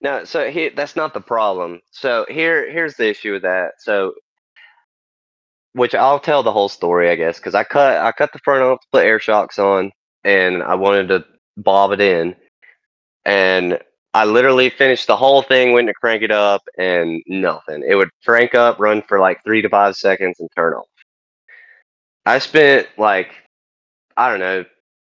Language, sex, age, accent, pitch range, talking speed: English, male, 20-39, American, 90-120 Hz, 180 wpm